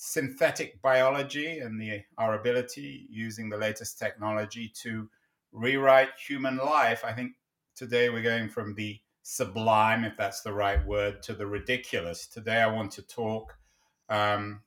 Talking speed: 145 wpm